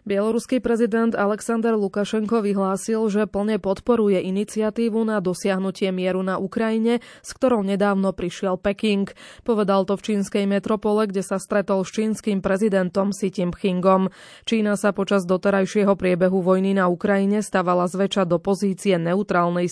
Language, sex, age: Slovak, female, 20-39